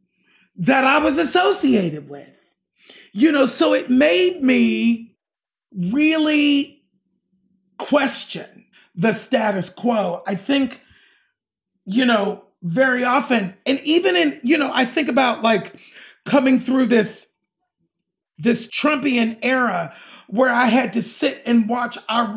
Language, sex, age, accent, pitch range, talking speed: English, male, 40-59, American, 220-285 Hz, 120 wpm